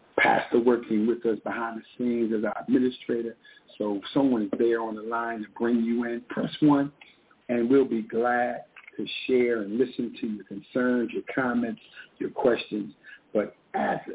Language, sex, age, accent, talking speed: English, male, 50-69, American, 175 wpm